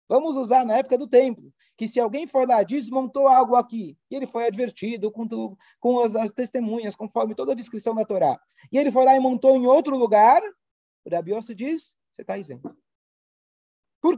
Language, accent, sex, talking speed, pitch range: Portuguese, Brazilian, male, 200 wpm, 155-245 Hz